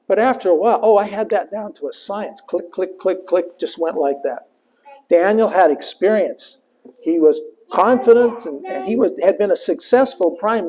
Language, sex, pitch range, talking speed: English, male, 175-275 Hz, 190 wpm